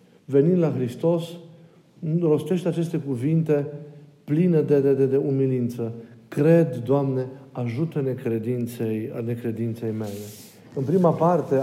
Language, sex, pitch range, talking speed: Romanian, male, 130-155 Hz, 110 wpm